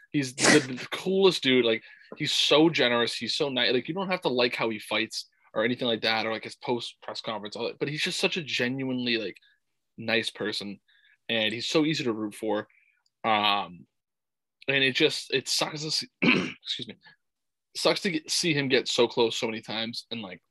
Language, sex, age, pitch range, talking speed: English, male, 20-39, 110-130 Hz, 210 wpm